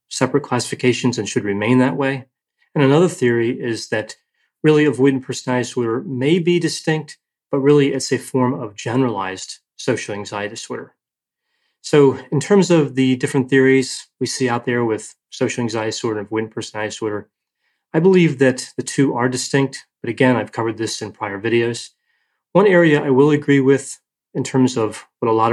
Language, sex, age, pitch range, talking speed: English, male, 30-49, 115-140 Hz, 175 wpm